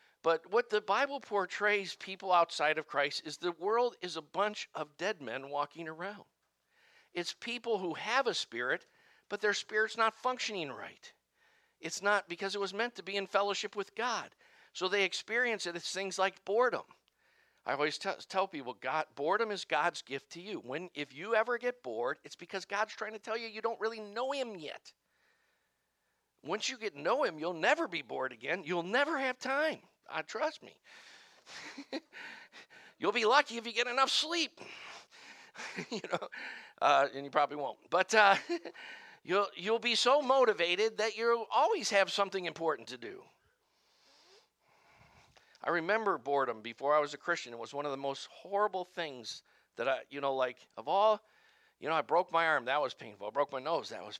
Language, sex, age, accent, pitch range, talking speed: English, male, 50-69, American, 170-240 Hz, 190 wpm